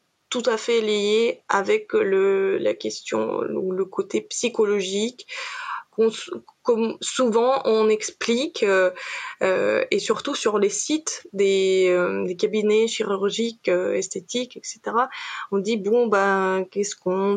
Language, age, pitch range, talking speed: French, 20-39, 200-295 Hz, 130 wpm